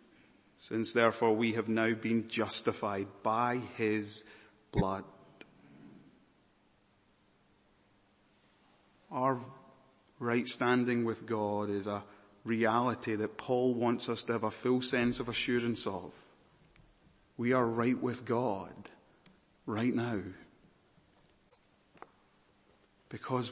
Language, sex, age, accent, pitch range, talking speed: English, male, 30-49, British, 110-130 Hz, 95 wpm